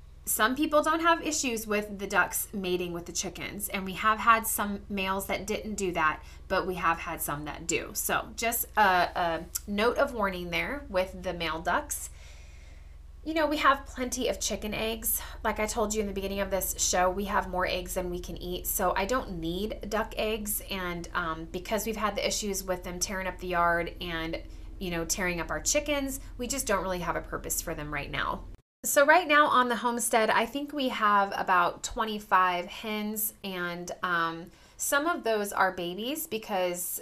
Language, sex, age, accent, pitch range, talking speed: English, female, 20-39, American, 175-220 Hz, 205 wpm